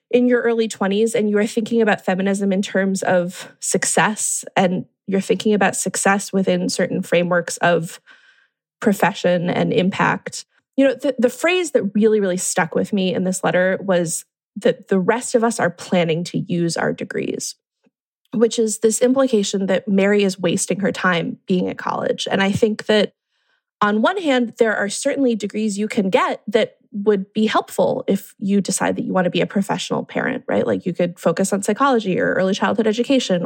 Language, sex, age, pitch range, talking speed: English, female, 20-39, 195-250 Hz, 190 wpm